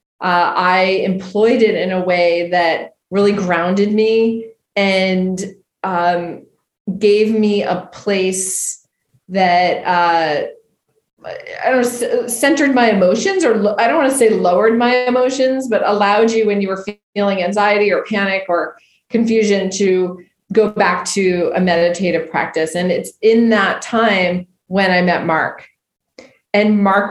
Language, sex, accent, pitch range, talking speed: English, female, American, 175-210 Hz, 145 wpm